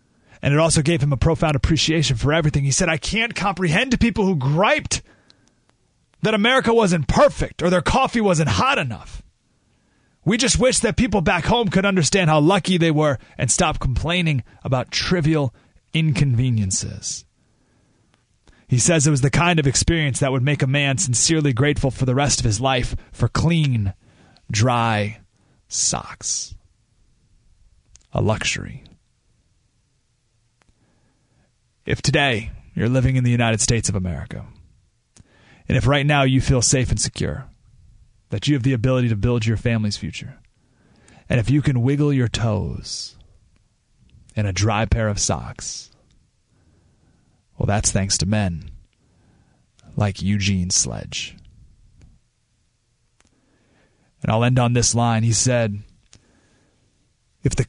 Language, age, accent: English, 30-49, American